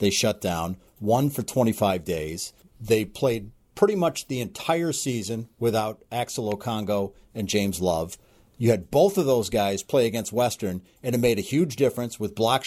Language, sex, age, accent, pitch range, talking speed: English, male, 50-69, American, 105-140 Hz, 175 wpm